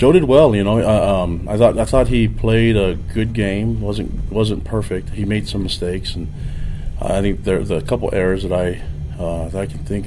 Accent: American